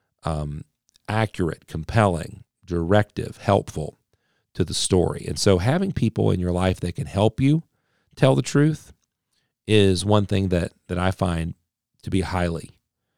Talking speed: 145 wpm